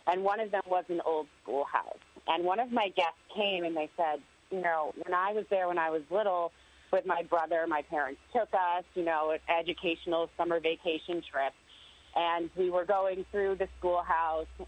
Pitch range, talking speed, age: 160-190 Hz, 195 wpm, 30-49